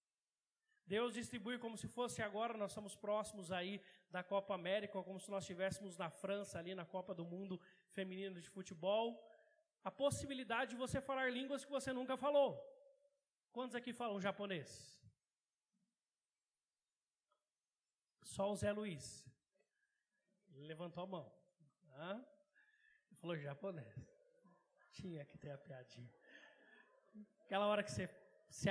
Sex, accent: male, Brazilian